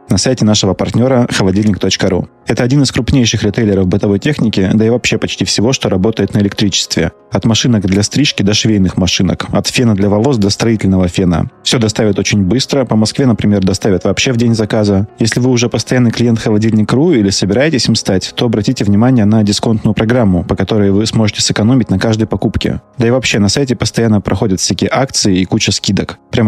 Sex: male